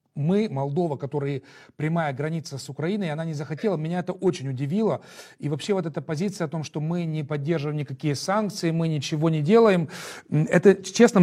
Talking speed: 175 wpm